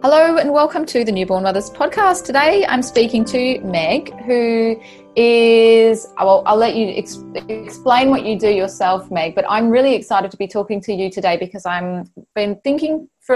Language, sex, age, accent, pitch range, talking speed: English, female, 20-39, Australian, 180-225 Hz, 175 wpm